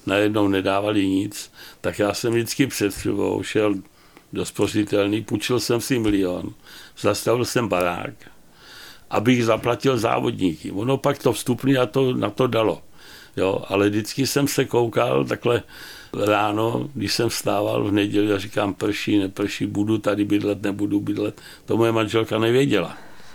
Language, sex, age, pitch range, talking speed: Czech, male, 60-79, 100-115 Hz, 140 wpm